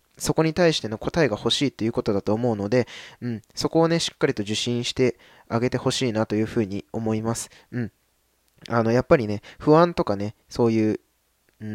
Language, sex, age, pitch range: Japanese, male, 20-39, 110-150 Hz